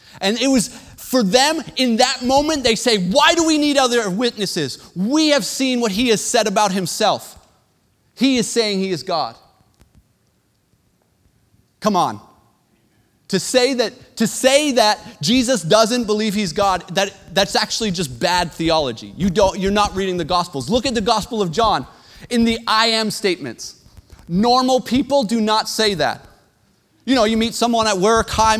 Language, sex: English, male